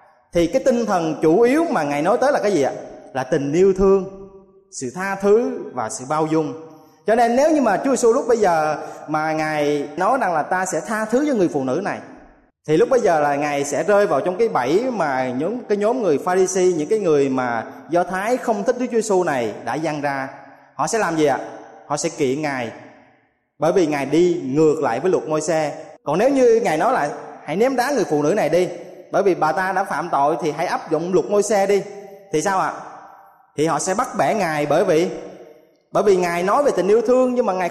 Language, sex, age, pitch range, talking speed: Vietnamese, male, 20-39, 155-225 Hz, 245 wpm